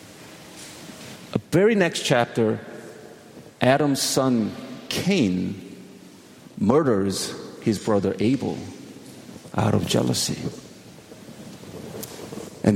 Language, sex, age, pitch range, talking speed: English, male, 50-69, 100-140 Hz, 65 wpm